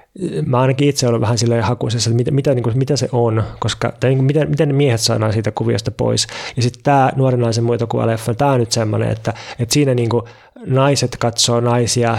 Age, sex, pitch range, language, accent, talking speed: 20-39, male, 115-125 Hz, Finnish, native, 190 wpm